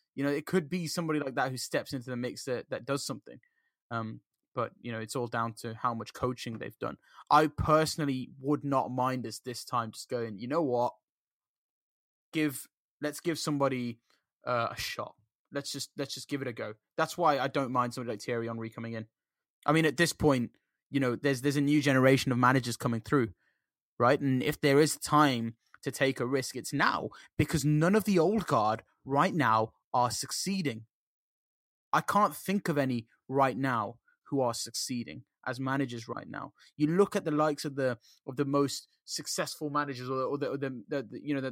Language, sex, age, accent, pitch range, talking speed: English, male, 20-39, British, 125-150 Hz, 195 wpm